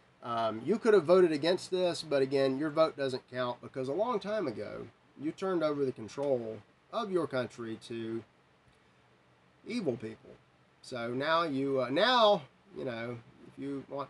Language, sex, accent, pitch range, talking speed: English, male, American, 115-160 Hz, 165 wpm